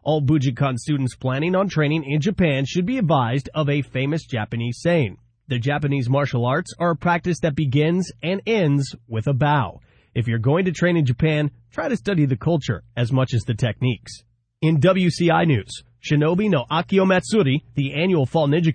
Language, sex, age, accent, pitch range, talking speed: English, male, 30-49, American, 130-175 Hz, 185 wpm